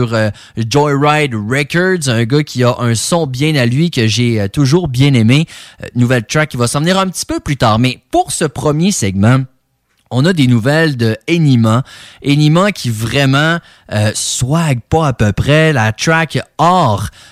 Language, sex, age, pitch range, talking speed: English, male, 30-49, 120-155 Hz, 175 wpm